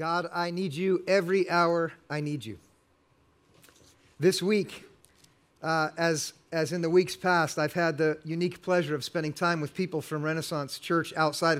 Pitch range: 150-175 Hz